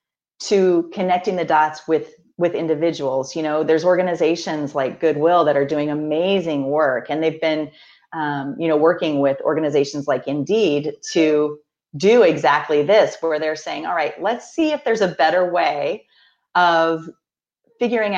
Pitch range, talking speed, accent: 155-190 Hz, 155 wpm, American